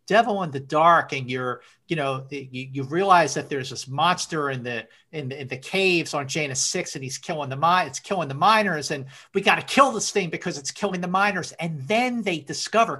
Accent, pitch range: American, 140-200 Hz